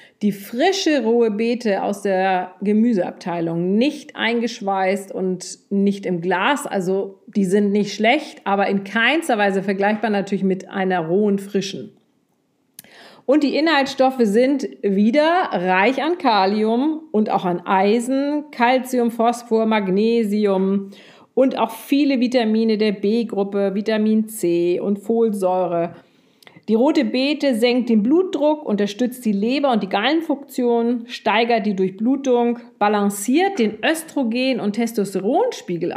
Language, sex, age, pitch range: German, female, 40-59, 195-240 Hz